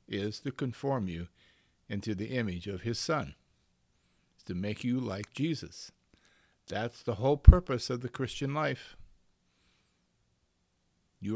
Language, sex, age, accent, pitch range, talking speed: English, male, 50-69, American, 105-140 Hz, 125 wpm